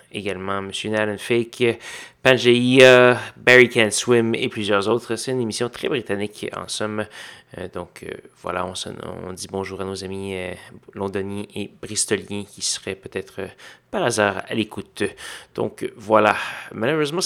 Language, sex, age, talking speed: French, male, 30-49, 155 wpm